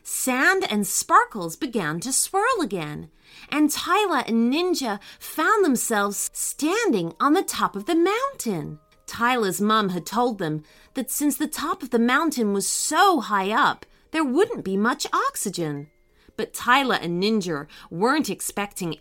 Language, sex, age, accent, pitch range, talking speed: English, female, 30-49, American, 180-300 Hz, 150 wpm